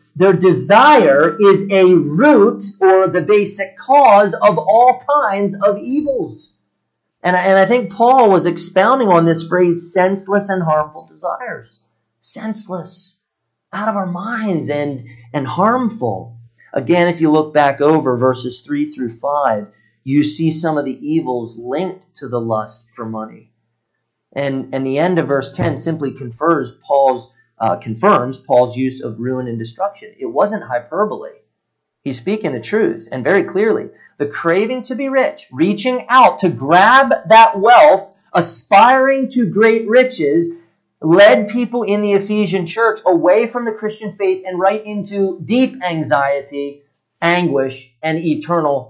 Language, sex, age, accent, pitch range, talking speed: English, male, 40-59, American, 140-215 Hz, 145 wpm